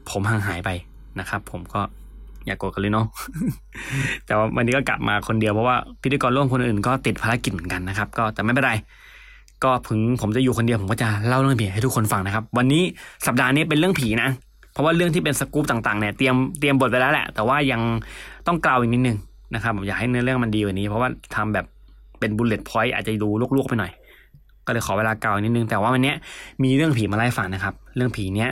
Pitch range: 110-135 Hz